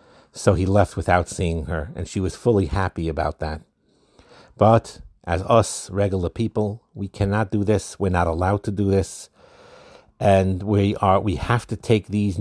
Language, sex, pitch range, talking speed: English, male, 90-105 Hz, 175 wpm